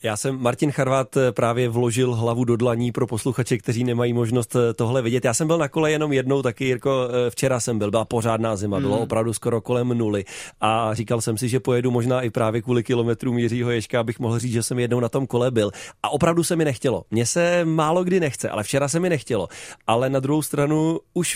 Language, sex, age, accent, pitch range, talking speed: Czech, male, 30-49, native, 115-140 Hz, 220 wpm